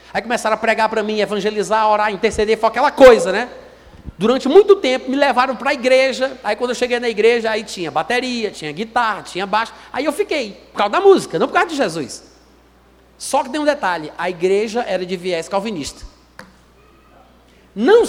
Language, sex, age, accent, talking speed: Portuguese, male, 40-59, Brazilian, 190 wpm